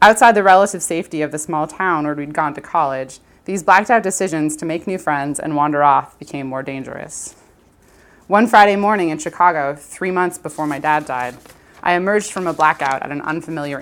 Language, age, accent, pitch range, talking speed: English, 20-39, American, 140-175 Hz, 195 wpm